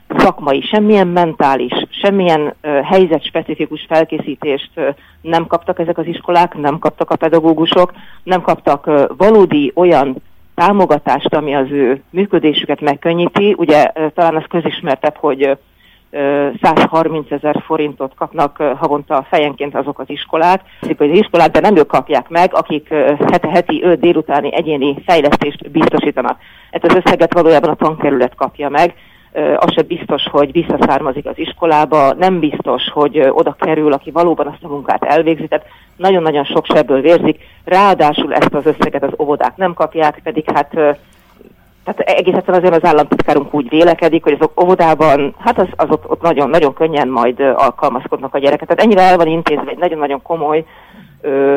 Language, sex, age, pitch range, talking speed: Hungarian, female, 40-59, 145-170 Hz, 150 wpm